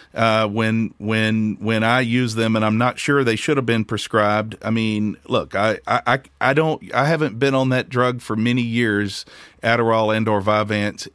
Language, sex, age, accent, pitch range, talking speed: English, male, 40-59, American, 110-135 Hz, 195 wpm